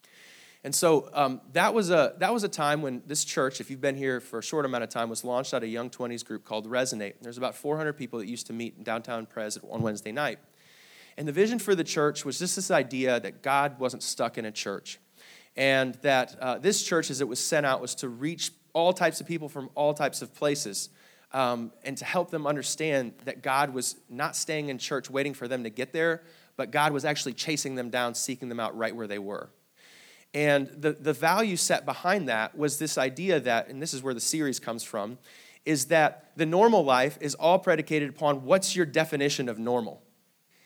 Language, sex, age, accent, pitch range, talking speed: English, male, 30-49, American, 125-160 Hz, 225 wpm